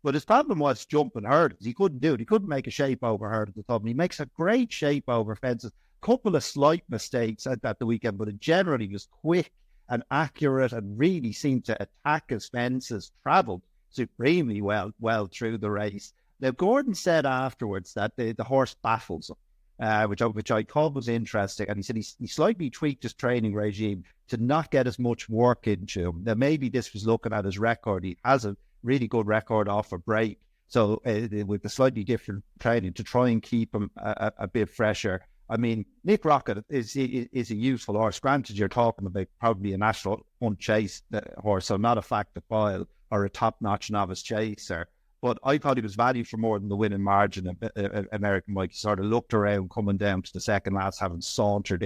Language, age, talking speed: English, 50-69, 215 wpm